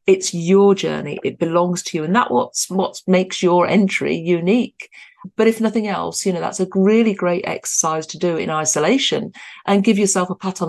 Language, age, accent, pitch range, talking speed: English, 50-69, British, 175-215 Hz, 200 wpm